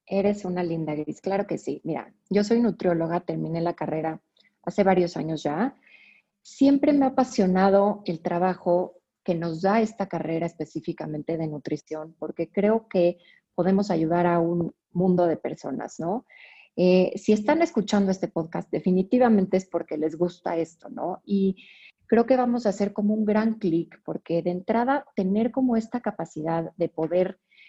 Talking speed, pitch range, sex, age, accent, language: 165 wpm, 170-215 Hz, female, 30-49, Mexican, Spanish